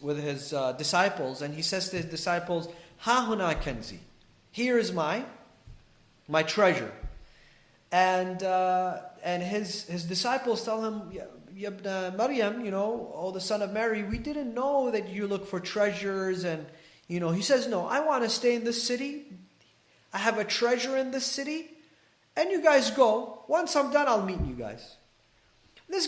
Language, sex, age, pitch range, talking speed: English, male, 30-49, 160-230 Hz, 165 wpm